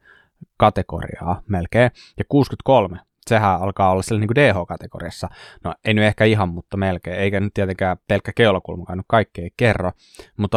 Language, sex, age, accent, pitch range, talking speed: Finnish, male, 20-39, native, 90-110 Hz, 150 wpm